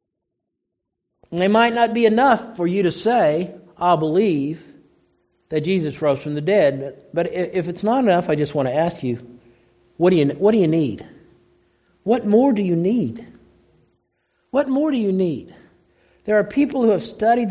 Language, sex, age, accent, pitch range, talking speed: English, male, 50-69, American, 155-215 Hz, 180 wpm